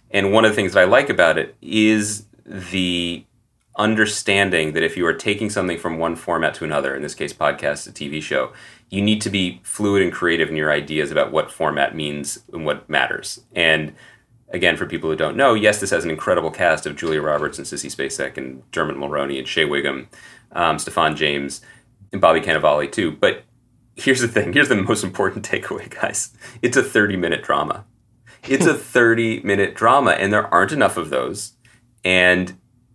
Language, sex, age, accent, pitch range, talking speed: English, male, 30-49, American, 80-105 Hz, 190 wpm